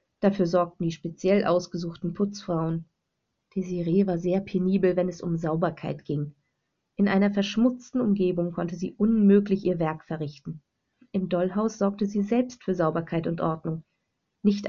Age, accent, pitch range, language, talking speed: 30-49, German, 170-205 Hz, German, 145 wpm